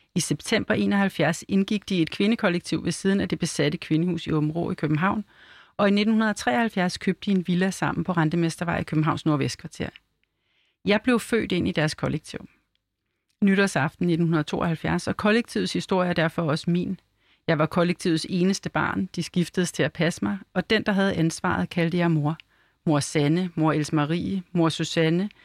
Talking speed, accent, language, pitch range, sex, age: 175 wpm, native, Danish, 160-190 Hz, female, 40-59